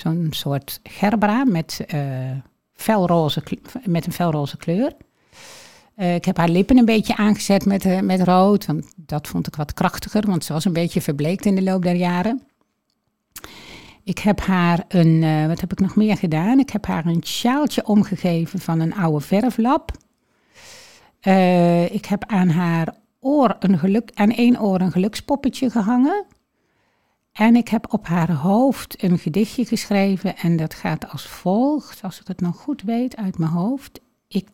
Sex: female